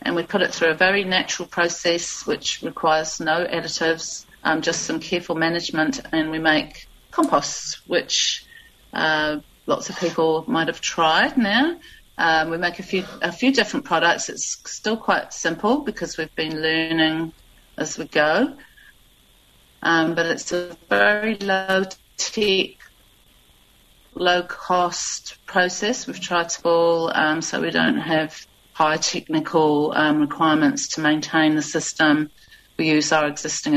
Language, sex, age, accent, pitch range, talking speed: English, female, 40-59, British, 155-190 Hz, 140 wpm